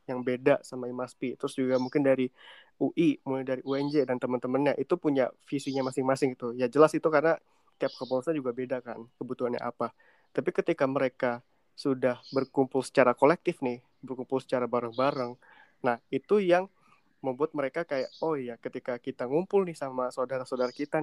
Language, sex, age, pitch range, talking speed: Indonesian, male, 20-39, 130-145 Hz, 160 wpm